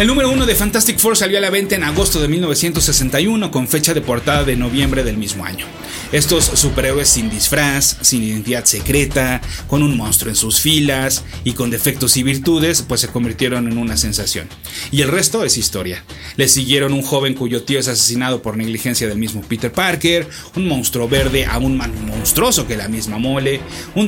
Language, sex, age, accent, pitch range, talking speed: Spanish, male, 30-49, Mexican, 120-160 Hz, 190 wpm